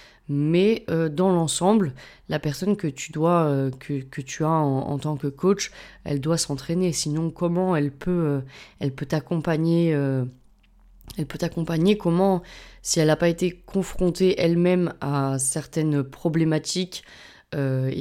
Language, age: French, 20-39